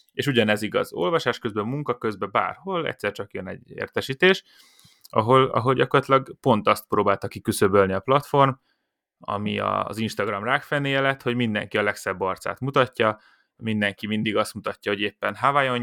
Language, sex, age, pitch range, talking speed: Hungarian, male, 20-39, 105-135 Hz, 150 wpm